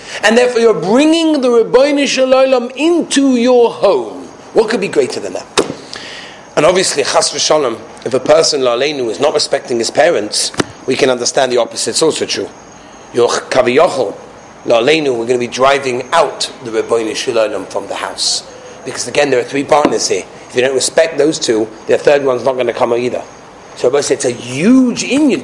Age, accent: 40-59, British